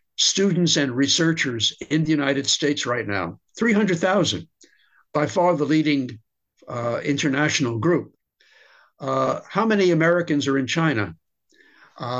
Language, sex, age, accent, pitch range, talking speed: English, male, 60-79, American, 130-160 Hz, 125 wpm